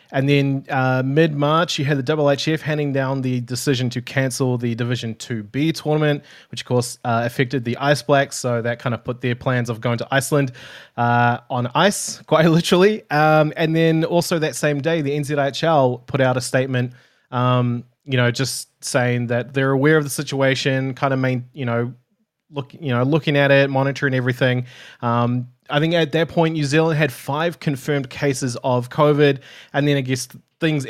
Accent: Australian